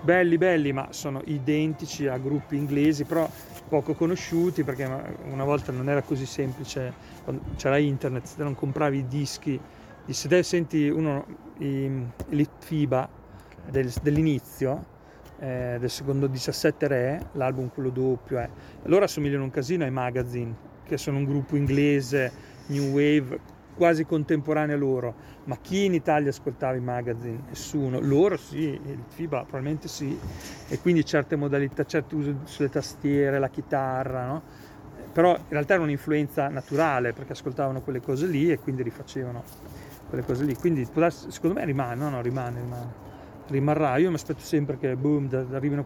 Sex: male